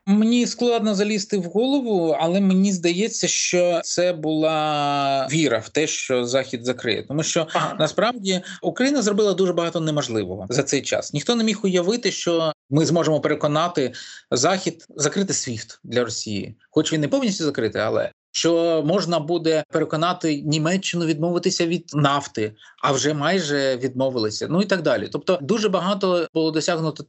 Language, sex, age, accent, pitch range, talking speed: Ukrainian, male, 20-39, native, 145-190 Hz, 150 wpm